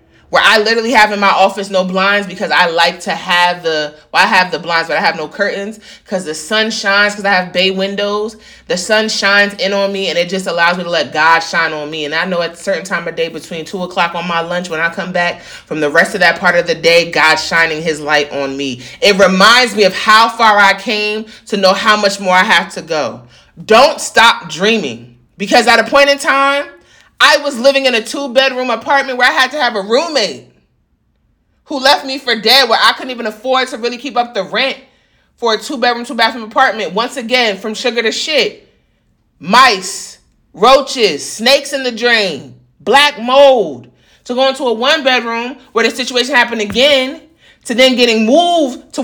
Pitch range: 185-255 Hz